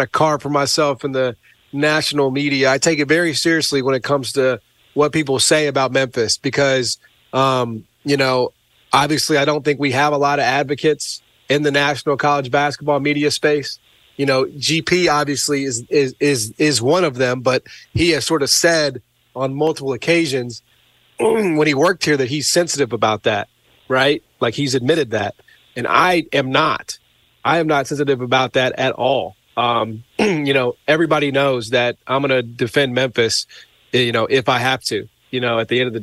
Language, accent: English, American